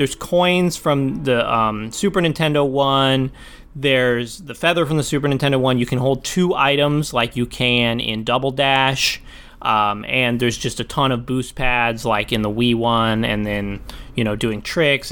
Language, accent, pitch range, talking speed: English, American, 120-150 Hz, 185 wpm